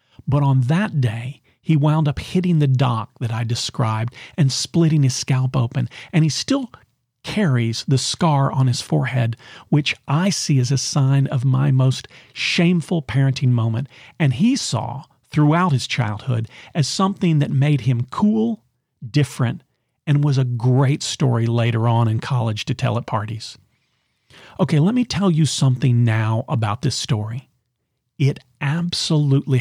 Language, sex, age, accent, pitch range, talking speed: English, male, 40-59, American, 120-145 Hz, 155 wpm